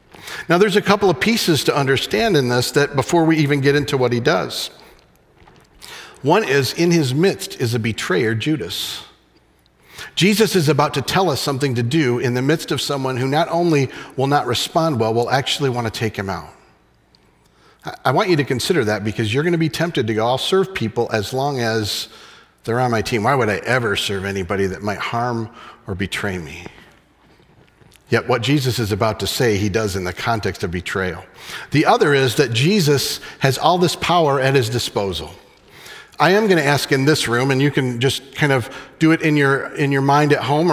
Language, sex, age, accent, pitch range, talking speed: English, male, 50-69, American, 110-150 Hz, 205 wpm